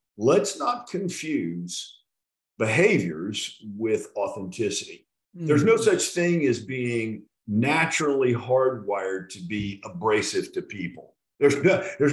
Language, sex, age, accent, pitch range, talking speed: English, male, 50-69, American, 100-145 Hz, 100 wpm